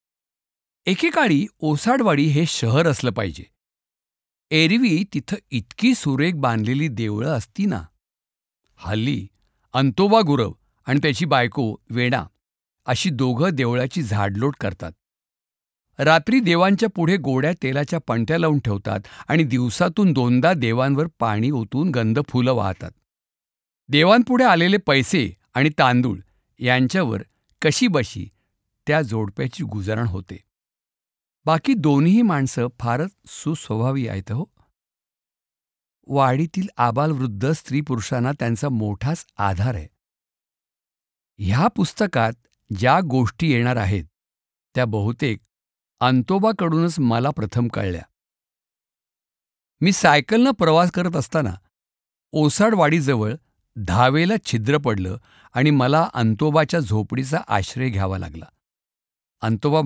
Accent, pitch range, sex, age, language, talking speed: native, 110-160 Hz, male, 50-69, Marathi, 95 wpm